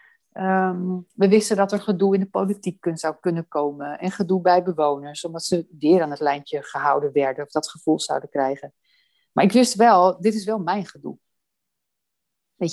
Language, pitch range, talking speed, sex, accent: Dutch, 165-205 Hz, 180 wpm, female, Dutch